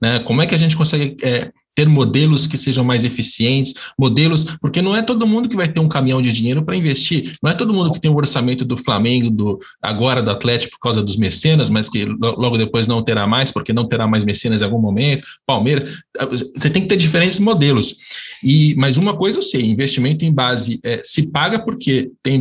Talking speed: 220 wpm